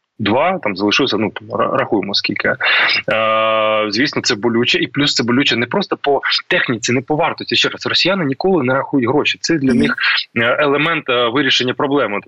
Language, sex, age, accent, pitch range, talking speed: Ukrainian, male, 20-39, native, 110-140 Hz, 165 wpm